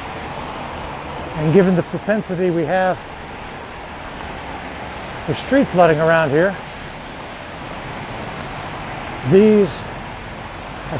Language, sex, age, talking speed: English, male, 60-79, 70 wpm